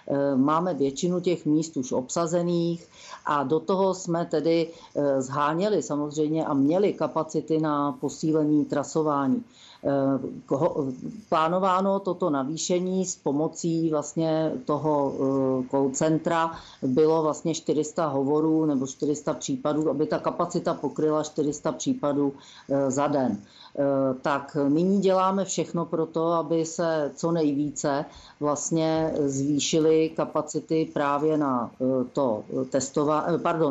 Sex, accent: female, native